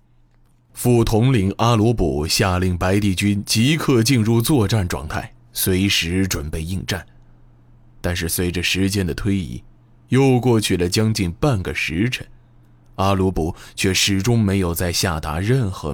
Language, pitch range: Chinese, 80-120 Hz